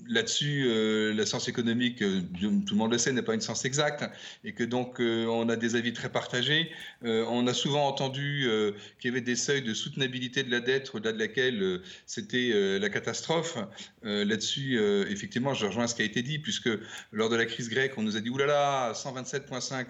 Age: 40-59